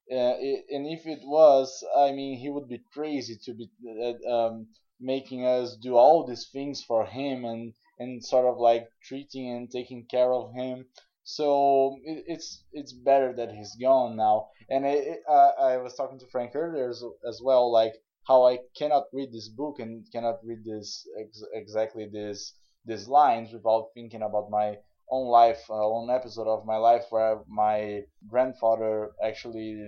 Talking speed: 175 wpm